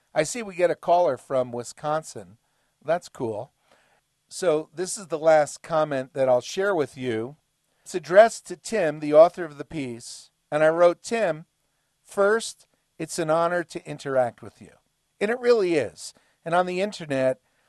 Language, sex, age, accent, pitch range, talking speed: English, male, 50-69, American, 140-185 Hz, 170 wpm